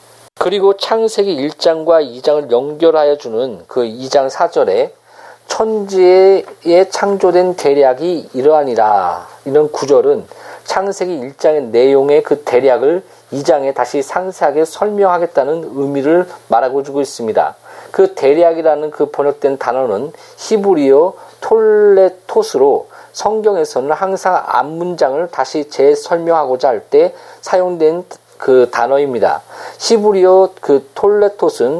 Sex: male